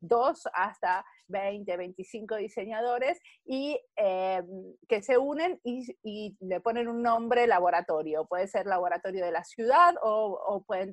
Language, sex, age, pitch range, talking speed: Spanish, female, 30-49, 195-260 Hz, 145 wpm